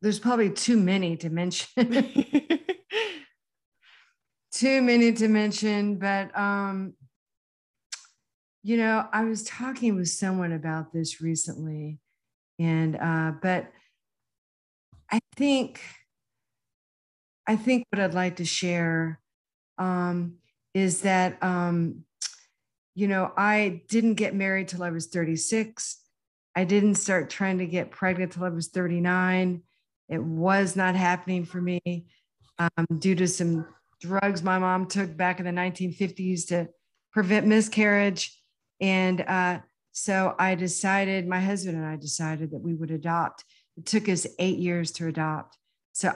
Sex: female